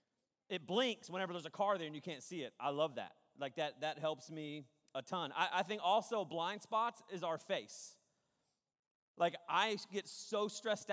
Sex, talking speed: male, 200 wpm